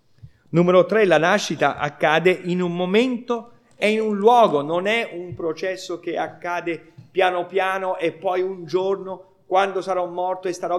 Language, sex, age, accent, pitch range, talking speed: Italian, male, 40-59, native, 155-225 Hz, 160 wpm